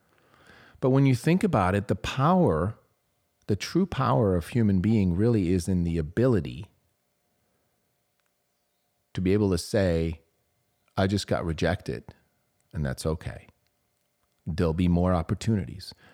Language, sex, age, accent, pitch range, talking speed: English, male, 40-59, American, 90-120 Hz, 130 wpm